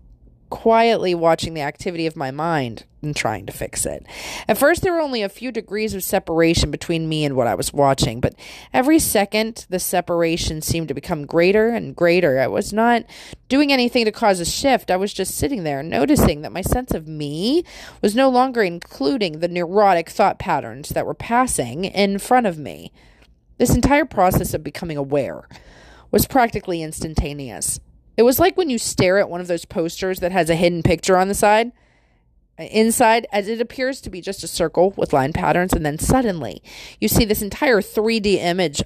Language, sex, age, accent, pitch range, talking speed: English, female, 30-49, American, 155-225 Hz, 190 wpm